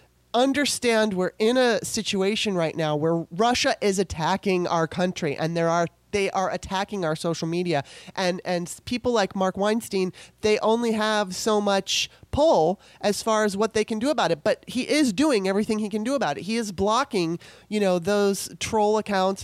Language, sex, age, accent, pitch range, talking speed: English, male, 30-49, American, 165-215 Hz, 190 wpm